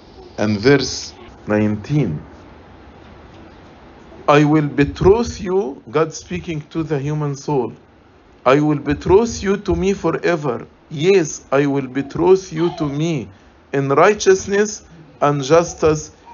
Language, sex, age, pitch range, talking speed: English, male, 50-69, 125-170 Hz, 115 wpm